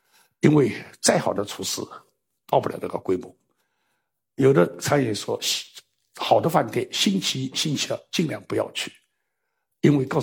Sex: male